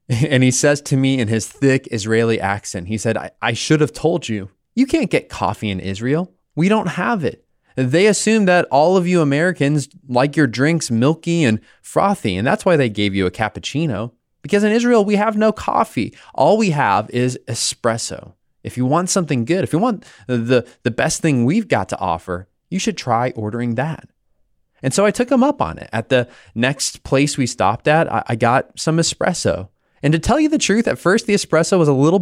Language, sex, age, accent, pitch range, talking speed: English, male, 20-39, American, 110-160 Hz, 215 wpm